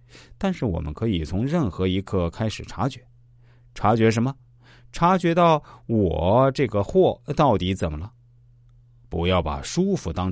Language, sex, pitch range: Chinese, male, 95-125 Hz